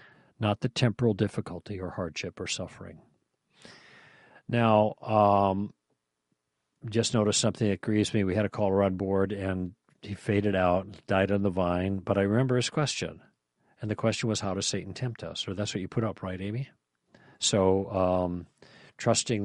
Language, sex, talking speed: English, male, 170 wpm